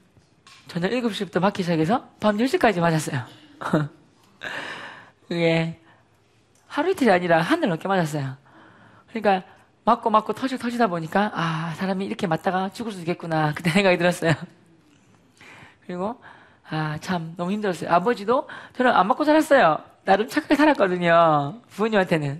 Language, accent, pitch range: Korean, native, 160-230 Hz